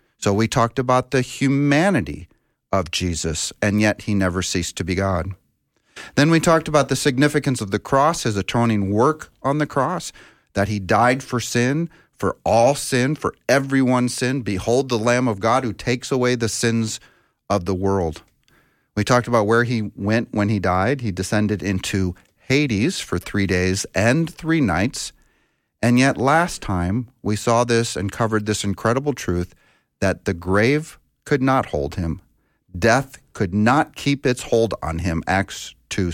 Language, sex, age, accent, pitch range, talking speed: English, male, 40-59, American, 95-125 Hz, 170 wpm